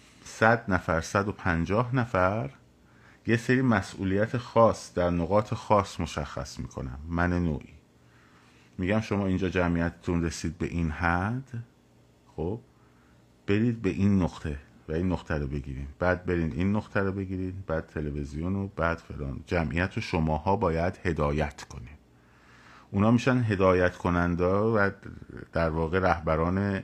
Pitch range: 75-95 Hz